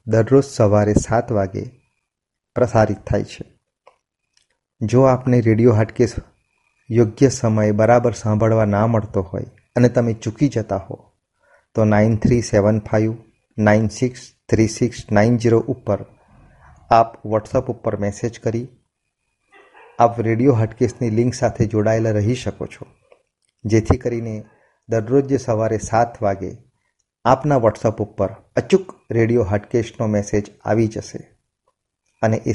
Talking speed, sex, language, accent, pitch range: 105 wpm, male, Gujarati, native, 110-125 Hz